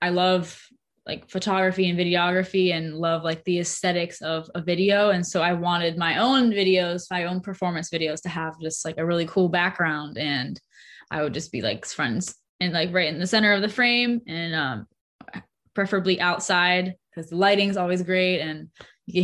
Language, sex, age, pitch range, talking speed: English, female, 10-29, 170-200 Hz, 185 wpm